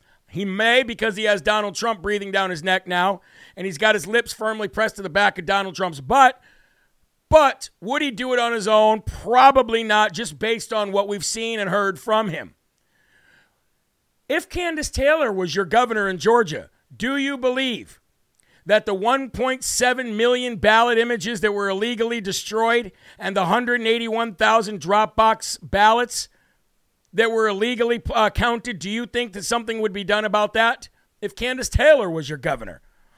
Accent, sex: American, male